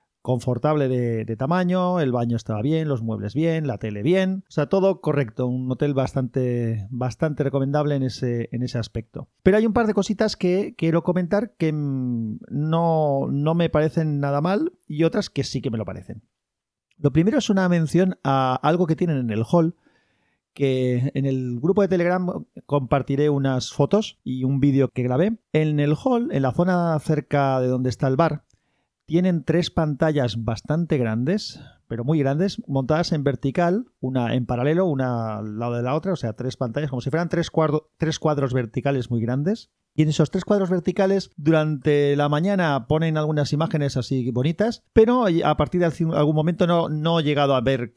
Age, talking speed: 40-59, 185 wpm